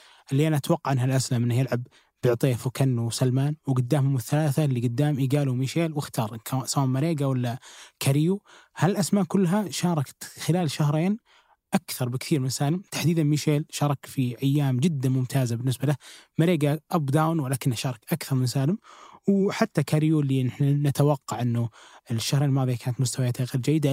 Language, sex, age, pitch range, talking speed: Arabic, male, 20-39, 125-150 Hz, 145 wpm